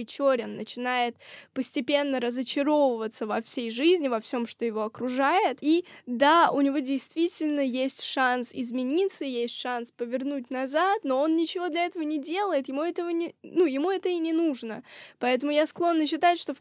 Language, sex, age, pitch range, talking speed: Russian, female, 20-39, 240-305 Hz, 165 wpm